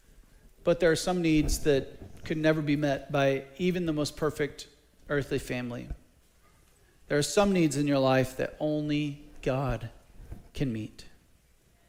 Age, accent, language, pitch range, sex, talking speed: 40-59, American, English, 105-155 Hz, male, 145 wpm